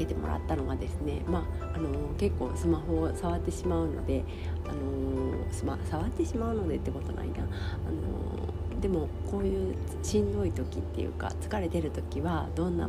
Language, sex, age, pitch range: Japanese, female, 40-59, 80-85 Hz